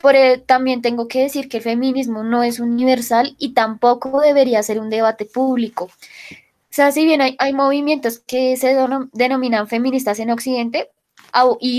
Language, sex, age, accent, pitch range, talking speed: Spanish, female, 10-29, Colombian, 230-270 Hz, 170 wpm